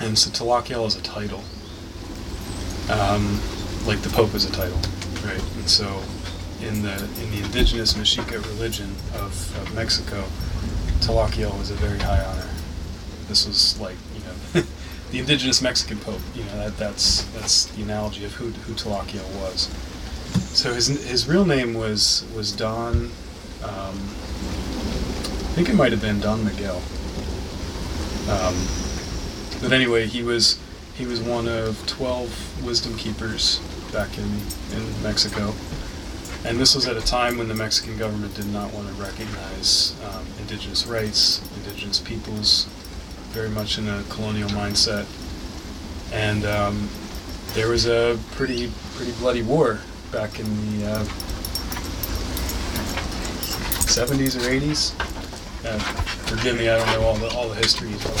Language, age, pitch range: English, 30-49, 90-110 Hz